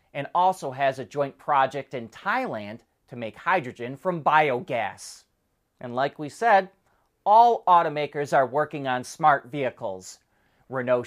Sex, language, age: male, English, 30-49